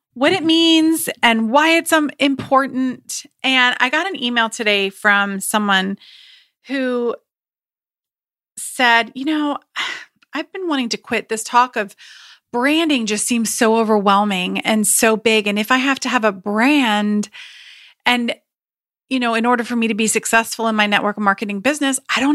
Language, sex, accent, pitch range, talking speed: English, female, American, 220-290 Hz, 160 wpm